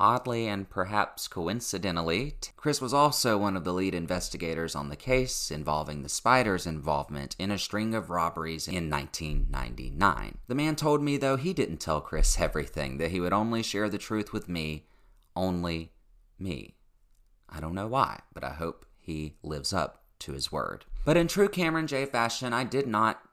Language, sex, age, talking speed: English, male, 30-49, 180 wpm